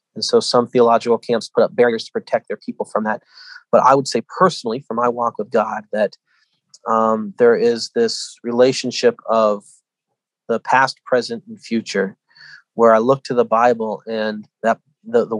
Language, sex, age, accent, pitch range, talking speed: English, male, 30-49, American, 115-140 Hz, 180 wpm